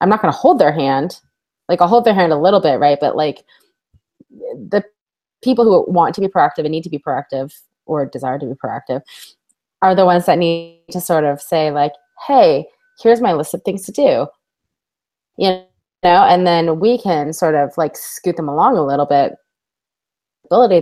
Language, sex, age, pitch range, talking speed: English, female, 20-39, 155-240 Hz, 195 wpm